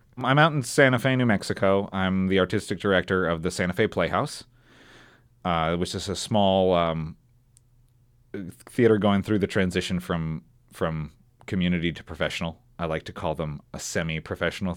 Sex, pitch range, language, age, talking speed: male, 85-120 Hz, English, 30-49, 160 wpm